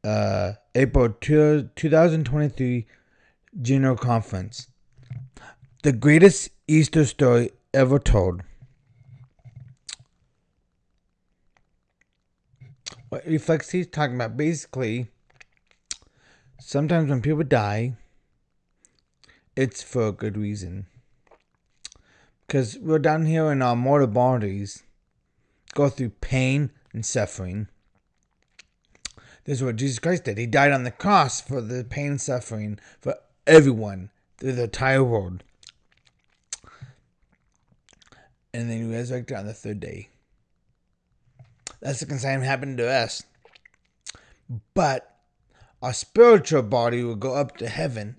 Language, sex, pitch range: English, male, 115-145 Hz